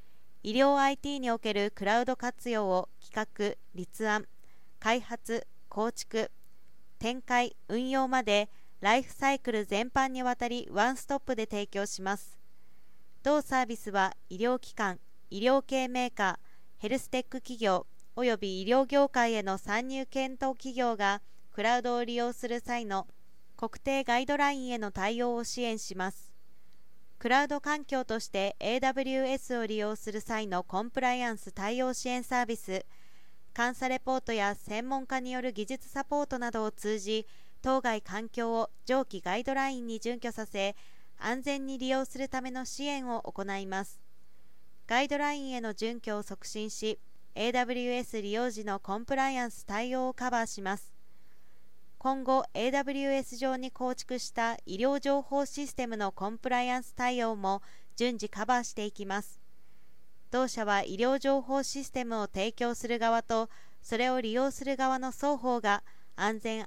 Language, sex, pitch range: Japanese, female, 210-260 Hz